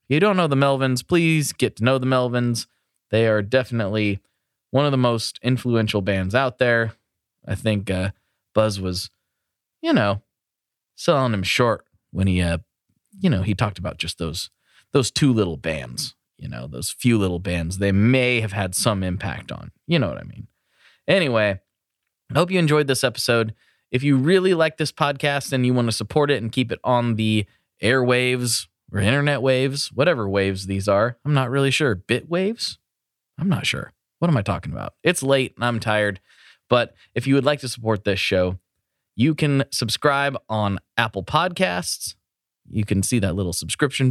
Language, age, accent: English, 20-39, American